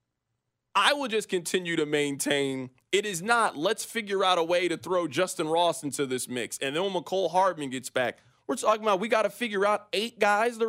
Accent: American